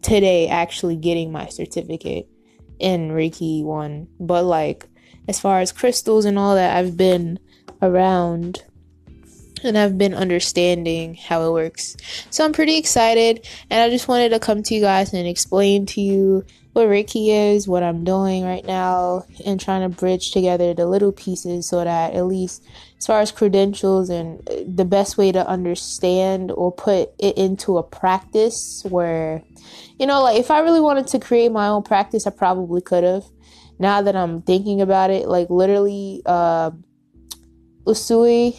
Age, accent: 20-39, American